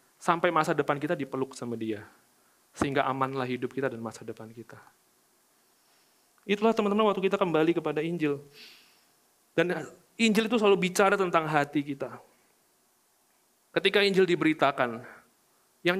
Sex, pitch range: male, 130-175 Hz